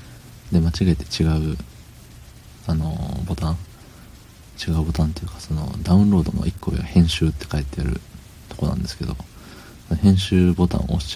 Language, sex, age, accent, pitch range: Japanese, male, 40-59, native, 80-95 Hz